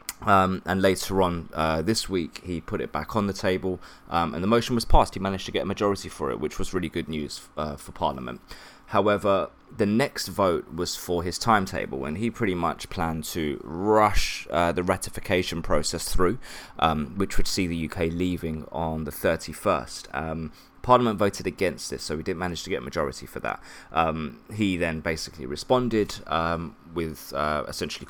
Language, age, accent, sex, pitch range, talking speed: English, 20-39, British, male, 80-100 Hz, 190 wpm